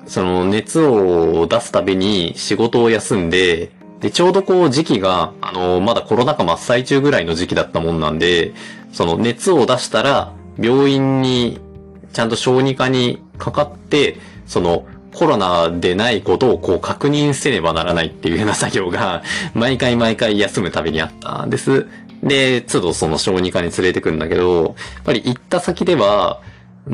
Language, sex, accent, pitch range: Japanese, male, native, 95-150 Hz